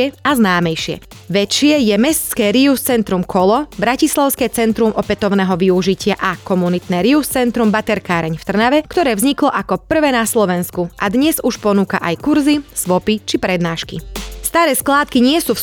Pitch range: 195-255 Hz